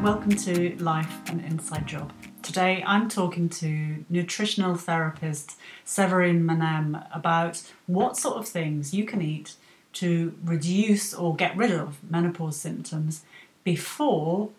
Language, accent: English, British